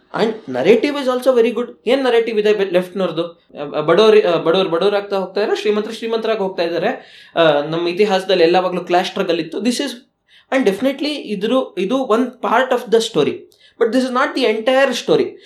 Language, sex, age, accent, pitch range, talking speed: Kannada, male, 20-39, native, 190-255 Hz, 165 wpm